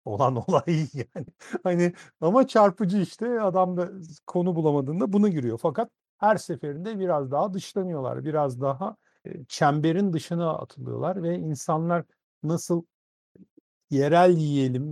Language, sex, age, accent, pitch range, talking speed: Turkish, male, 50-69, native, 135-175 Hz, 115 wpm